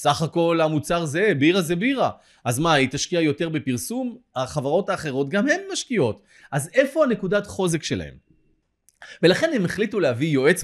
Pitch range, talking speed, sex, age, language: 160-245 Hz, 160 wpm, male, 30-49, Hebrew